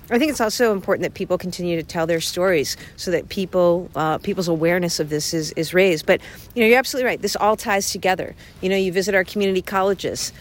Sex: female